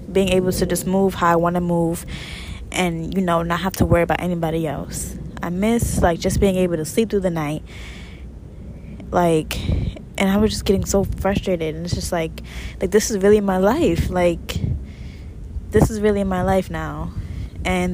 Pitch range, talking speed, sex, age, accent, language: 155-200 Hz, 190 wpm, female, 10-29, American, English